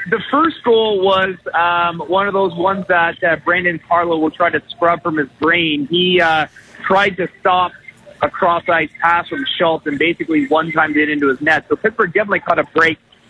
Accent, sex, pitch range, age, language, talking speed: American, male, 150-180 Hz, 30-49, English, 195 wpm